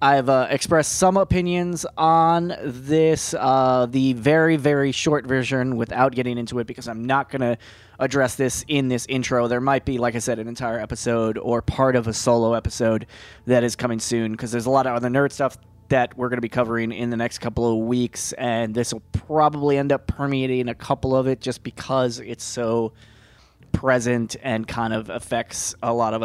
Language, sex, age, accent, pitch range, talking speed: English, male, 20-39, American, 115-135 Hz, 200 wpm